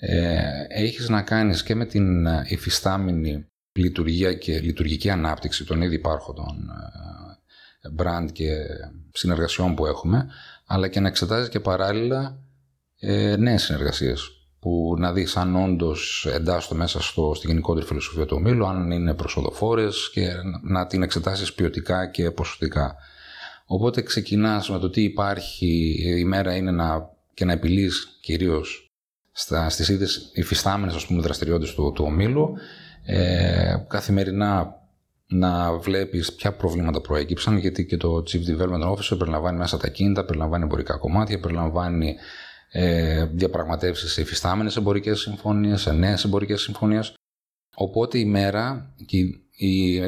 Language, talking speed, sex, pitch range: Greek, 130 wpm, male, 80-100 Hz